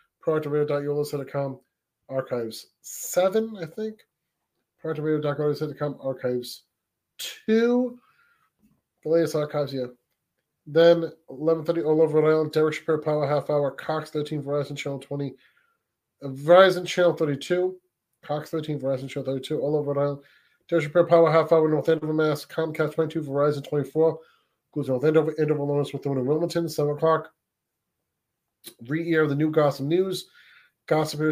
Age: 30-49